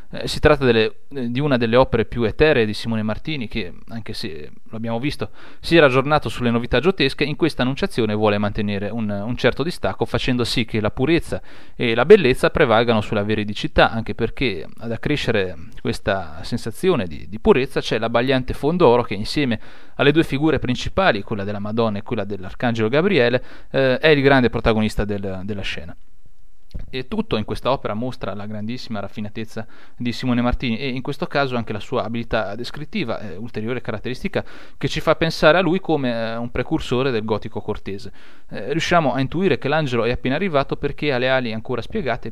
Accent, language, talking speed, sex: native, Italian, 185 wpm, male